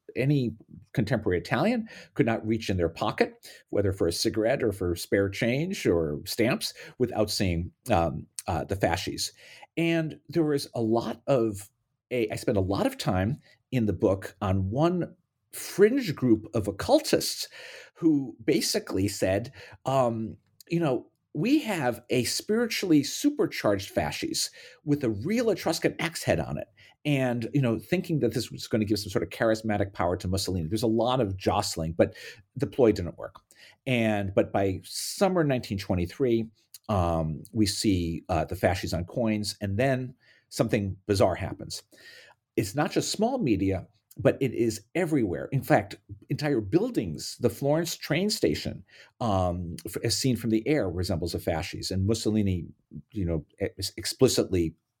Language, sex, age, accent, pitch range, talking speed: English, male, 50-69, American, 100-140 Hz, 155 wpm